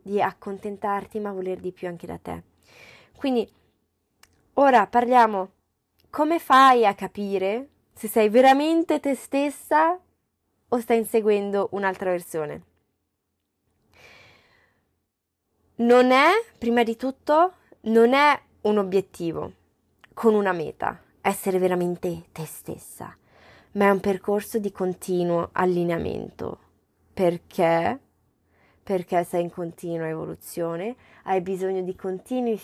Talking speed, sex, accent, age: 110 wpm, female, native, 20-39